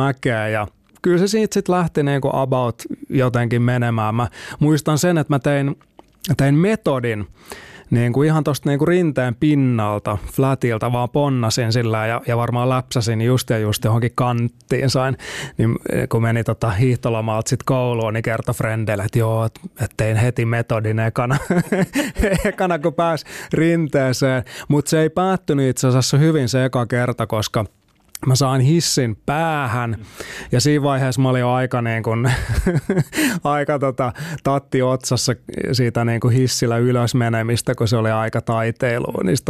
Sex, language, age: male, Finnish, 20-39